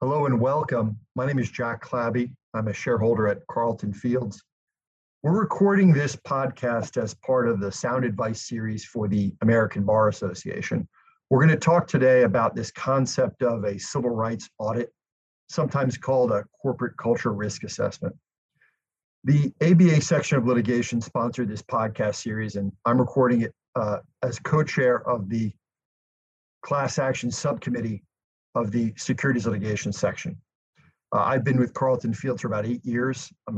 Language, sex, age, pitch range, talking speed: English, male, 50-69, 110-130 Hz, 155 wpm